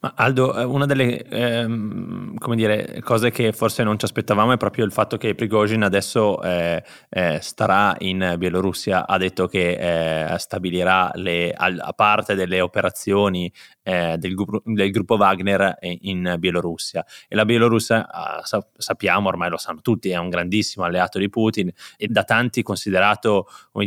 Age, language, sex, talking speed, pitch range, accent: 20-39, Italian, male, 155 wpm, 95-115 Hz, native